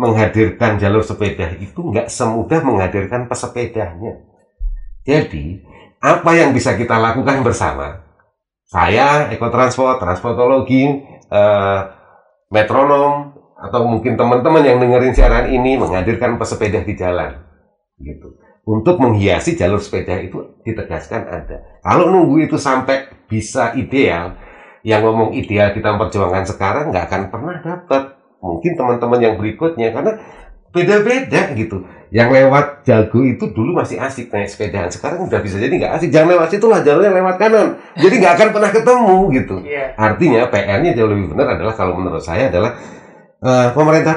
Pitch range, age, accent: 95-135 Hz, 30-49, native